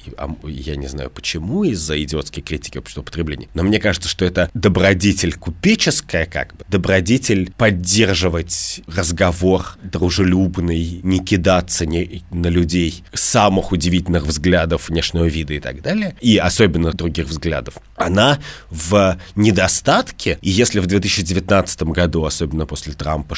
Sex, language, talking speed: male, Russian, 130 wpm